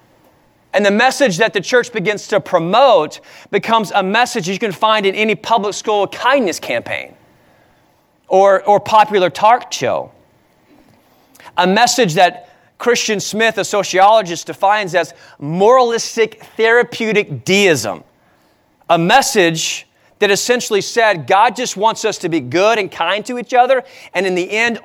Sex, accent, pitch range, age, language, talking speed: male, American, 165-225 Hz, 30-49, English, 140 wpm